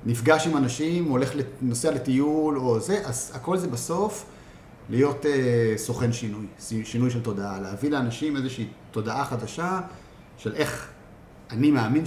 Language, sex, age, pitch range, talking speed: Hebrew, male, 30-49, 115-145 Hz, 140 wpm